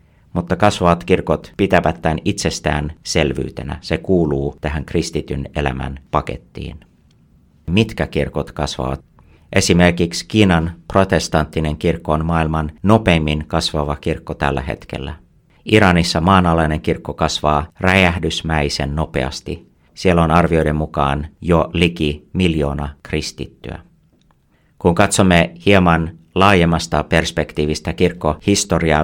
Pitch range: 75-85 Hz